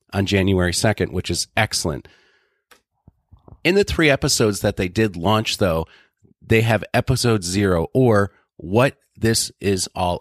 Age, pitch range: 30-49, 95-120 Hz